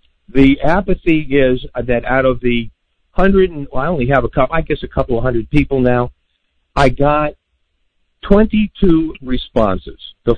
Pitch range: 115-150 Hz